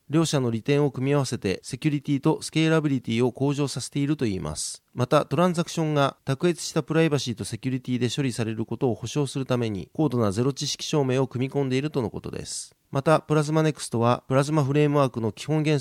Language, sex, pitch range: Japanese, male, 120-150 Hz